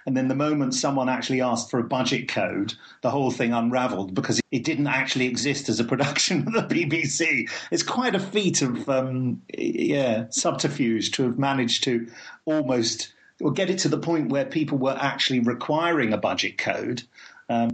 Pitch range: 115-140 Hz